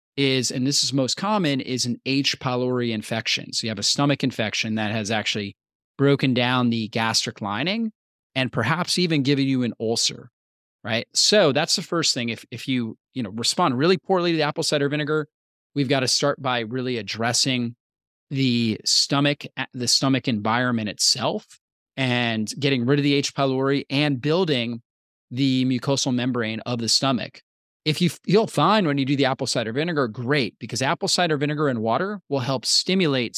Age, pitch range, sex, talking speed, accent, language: 30-49, 120-150 Hz, male, 180 wpm, American, English